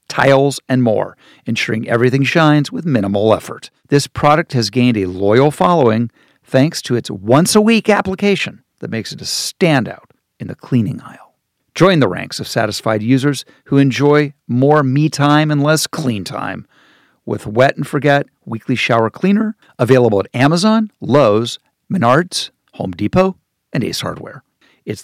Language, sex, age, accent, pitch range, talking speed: English, male, 50-69, American, 125-170 Hz, 150 wpm